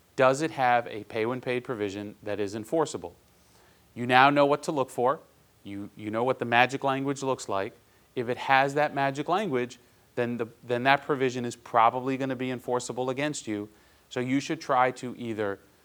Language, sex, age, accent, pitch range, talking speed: English, male, 40-59, American, 115-135 Hz, 195 wpm